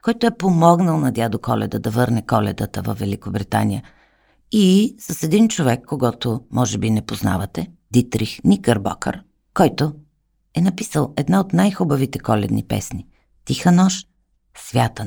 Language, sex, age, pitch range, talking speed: Bulgarian, female, 50-69, 110-170 Hz, 140 wpm